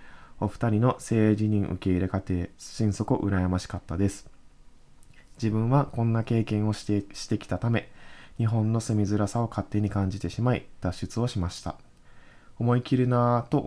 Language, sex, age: Japanese, male, 20-39